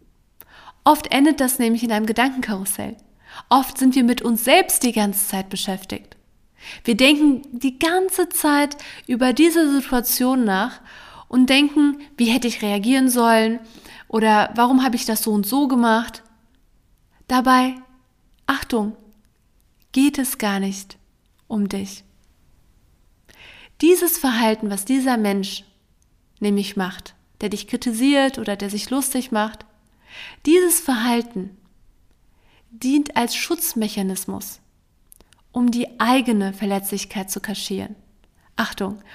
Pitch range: 205-260 Hz